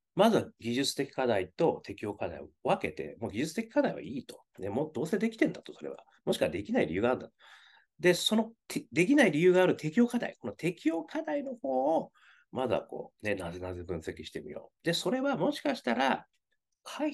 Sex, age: male, 40-59